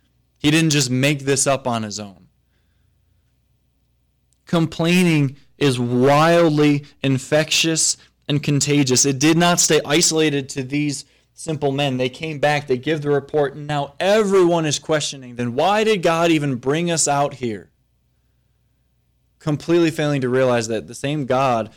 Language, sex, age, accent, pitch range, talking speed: English, male, 20-39, American, 120-150 Hz, 145 wpm